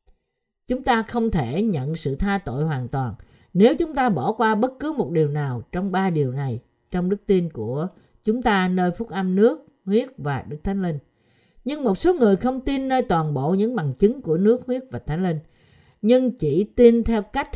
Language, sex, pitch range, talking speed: Vietnamese, female, 150-220 Hz, 210 wpm